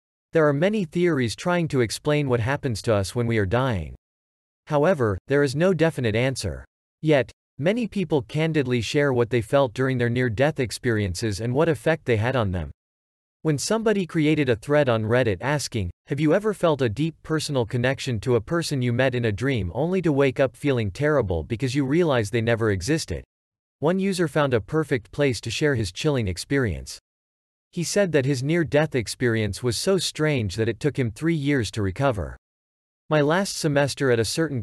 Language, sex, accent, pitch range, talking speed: English, male, American, 110-150 Hz, 190 wpm